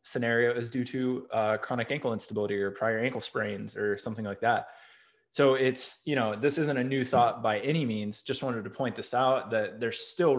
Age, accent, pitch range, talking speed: 20-39, American, 110-135 Hz, 215 wpm